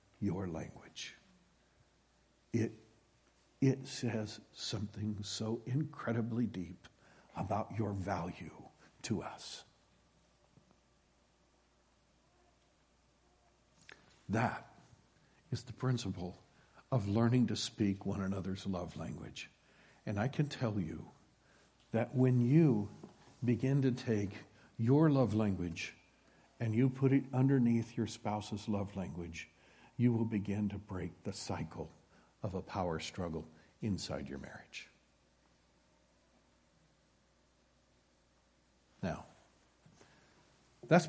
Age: 60-79